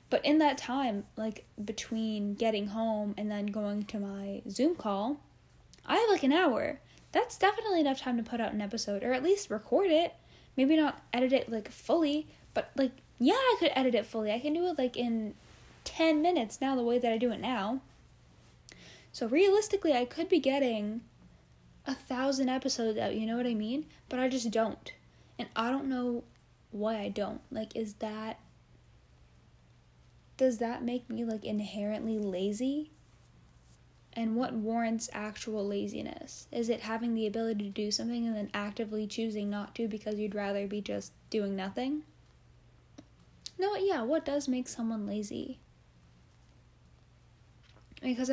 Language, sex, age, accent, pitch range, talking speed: English, female, 10-29, American, 205-255 Hz, 165 wpm